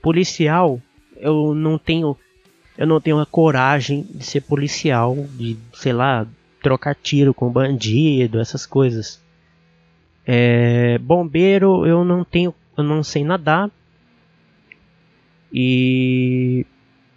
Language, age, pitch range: English, 20-39, 125-155 Hz